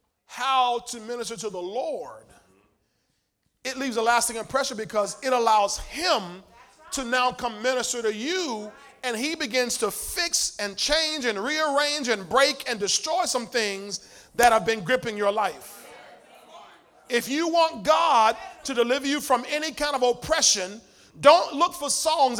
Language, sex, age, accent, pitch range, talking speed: English, male, 40-59, American, 225-285 Hz, 155 wpm